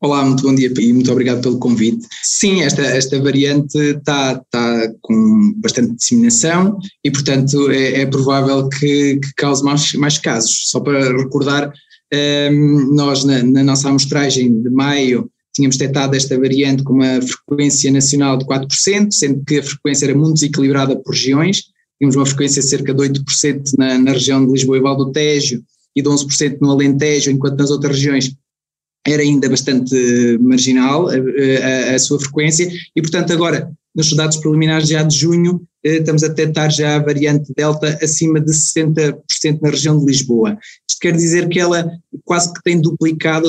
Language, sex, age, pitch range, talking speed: Portuguese, male, 20-39, 135-155 Hz, 170 wpm